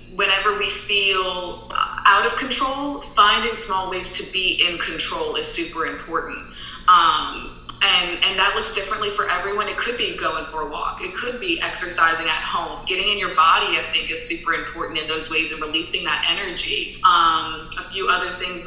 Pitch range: 160-200 Hz